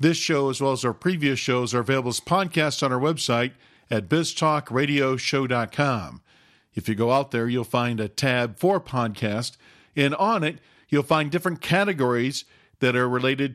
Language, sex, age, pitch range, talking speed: English, male, 50-69, 120-155 Hz, 170 wpm